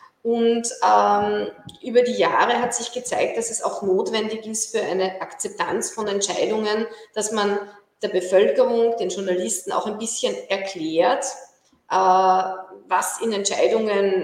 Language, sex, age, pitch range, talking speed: English, female, 20-39, 185-230 Hz, 135 wpm